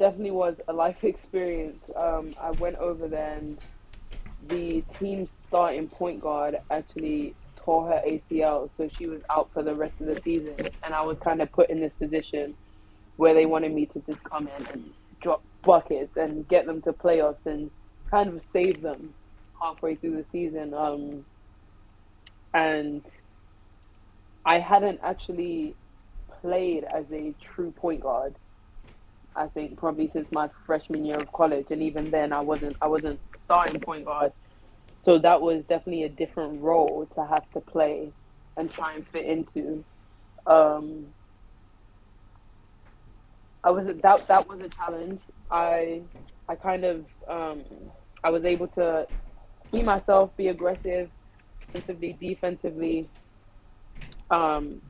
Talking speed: 145 wpm